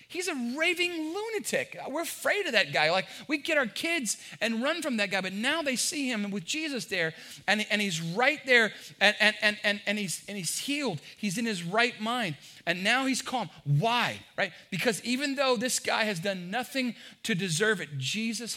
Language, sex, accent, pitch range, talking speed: English, male, American, 165-230 Hz, 190 wpm